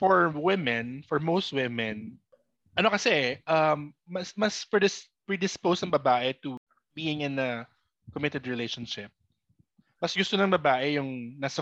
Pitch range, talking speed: 125-165 Hz, 130 wpm